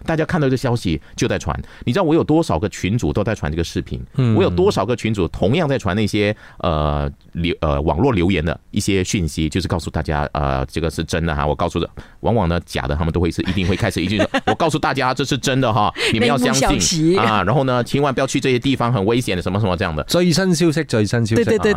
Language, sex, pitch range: Chinese, male, 80-125 Hz